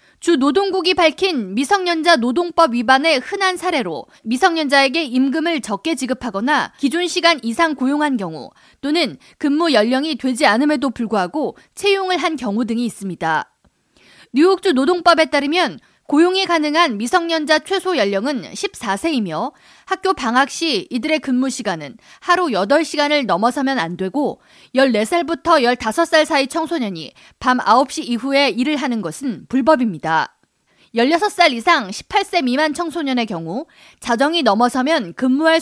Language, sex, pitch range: Korean, female, 245-340 Hz